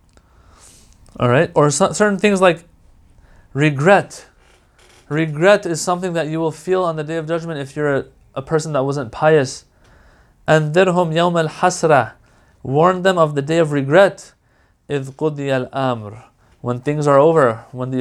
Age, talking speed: 30-49, 140 wpm